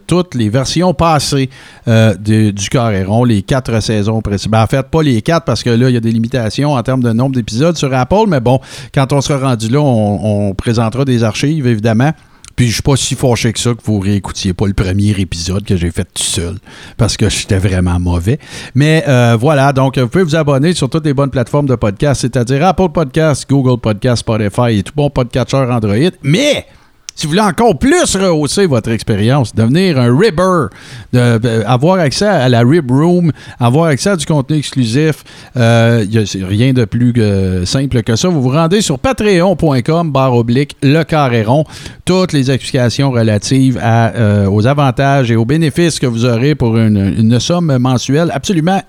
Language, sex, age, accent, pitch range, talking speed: French, male, 50-69, Canadian, 115-155 Hz, 200 wpm